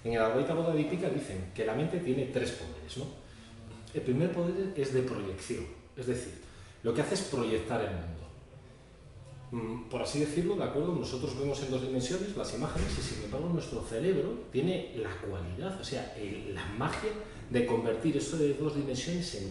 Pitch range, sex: 105-150 Hz, male